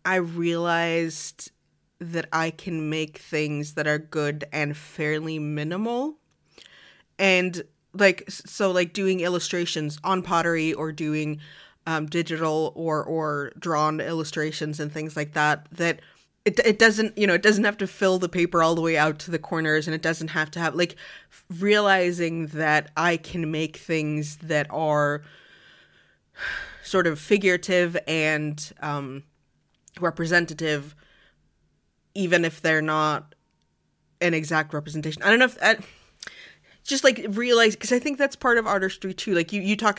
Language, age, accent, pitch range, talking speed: English, 20-39, American, 155-185 Hz, 150 wpm